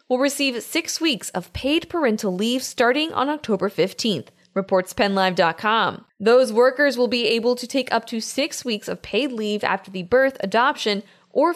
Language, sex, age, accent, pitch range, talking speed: English, female, 20-39, American, 210-260 Hz, 170 wpm